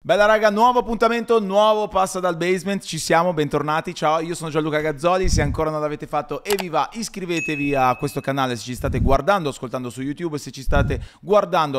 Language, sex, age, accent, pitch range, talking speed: Italian, male, 30-49, native, 120-155 Hz, 200 wpm